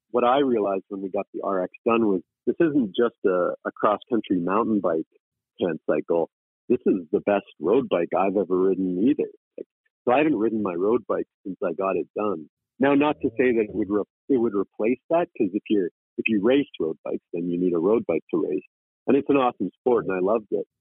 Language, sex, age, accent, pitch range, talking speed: English, male, 50-69, American, 100-125 Hz, 225 wpm